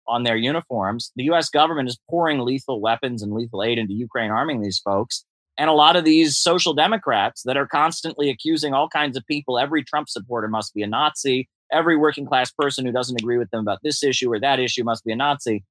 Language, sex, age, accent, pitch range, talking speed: English, male, 30-49, American, 115-145 Hz, 225 wpm